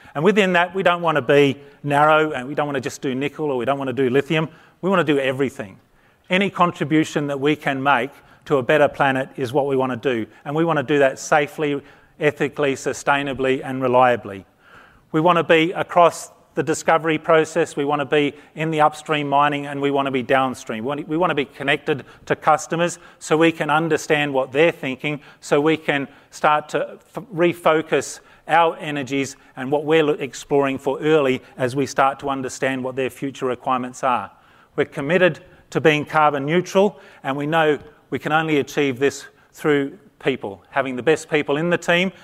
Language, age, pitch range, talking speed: English, 40-59, 135-155 Hz, 195 wpm